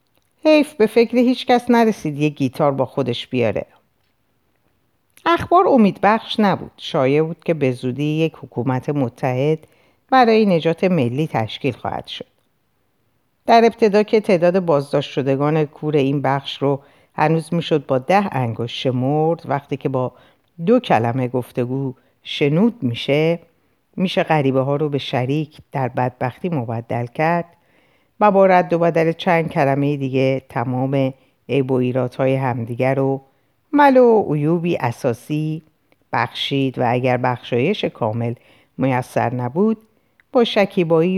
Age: 50-69